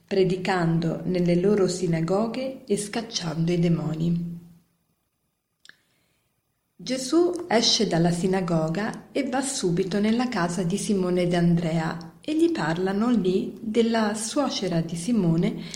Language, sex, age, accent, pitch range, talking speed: Italian, female, 40-59, native, 180-210 Hz, 110 wpm